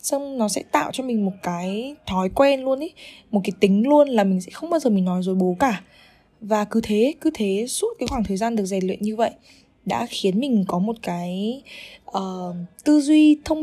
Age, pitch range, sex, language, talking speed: 10-29, 190-255 Hz, female, Vietnamese, 230 wpm